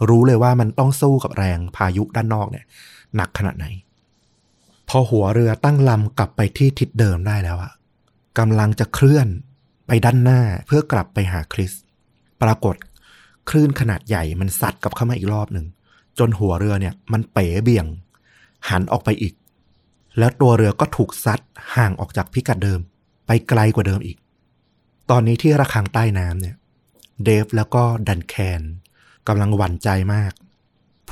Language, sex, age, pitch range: Thai, male, 20-39, 95-120 Hz